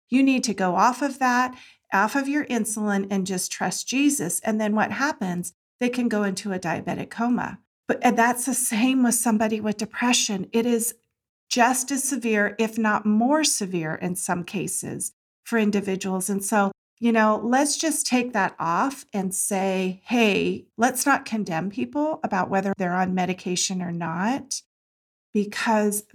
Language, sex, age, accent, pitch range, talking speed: English, female, 40-59, American, 190-240 Hz, 165 wpm